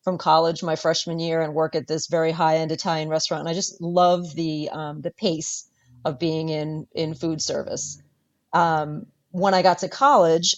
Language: English